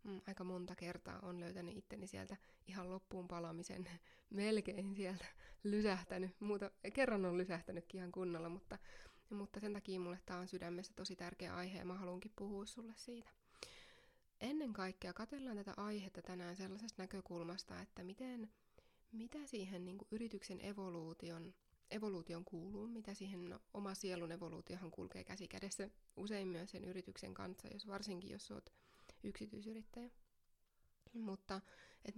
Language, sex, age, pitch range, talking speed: English, female, 20-39, 180-210 Hz, 135 wpm